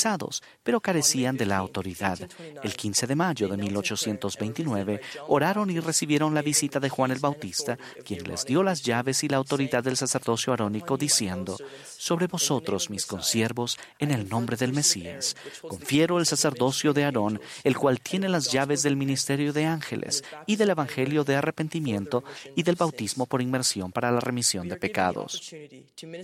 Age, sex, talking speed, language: 40-59, male, 160 wpm, Spanish